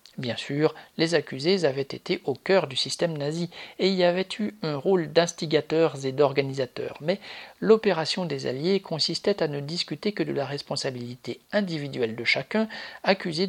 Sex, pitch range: male, 135-180 Hz